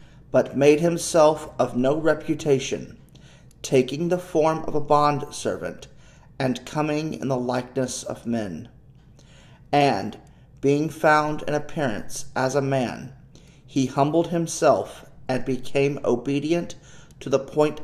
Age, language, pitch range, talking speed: 40-59, English, 125-150 Hz, 120 wpm